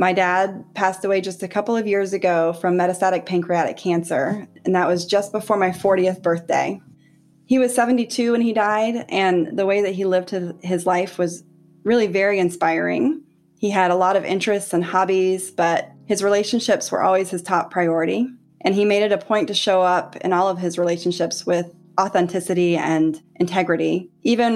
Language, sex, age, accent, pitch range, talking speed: English, female, 20-39, American, 175-200 Hz, 185 wpm